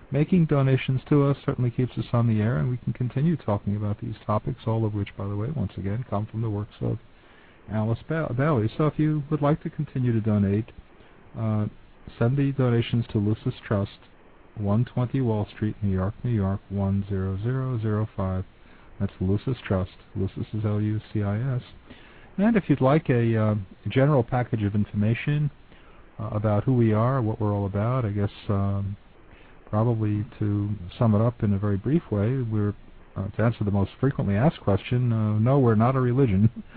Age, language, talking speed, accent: 50-69, English, 180 wpm, American